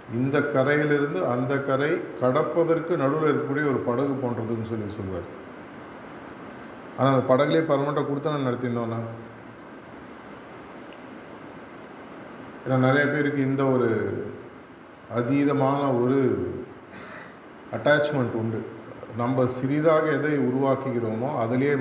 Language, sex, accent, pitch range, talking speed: Tamil, male, native, 120-150 Hz, 80 wpm